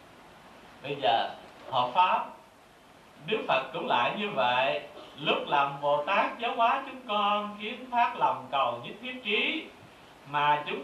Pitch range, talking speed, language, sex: 150-220 Hz, 150 wpm, Vietnamese, male